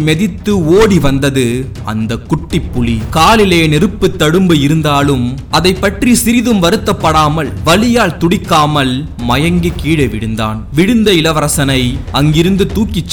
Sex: male